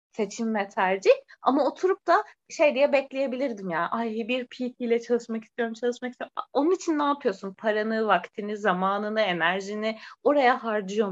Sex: female